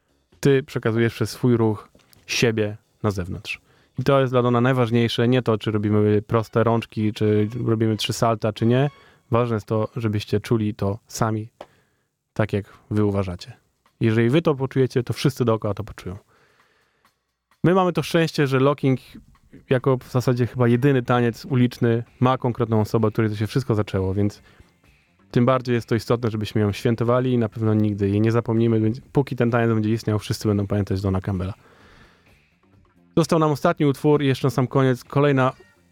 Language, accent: Polish, native